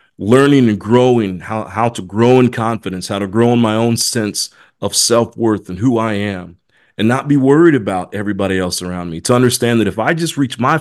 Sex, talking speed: male, 220 wpm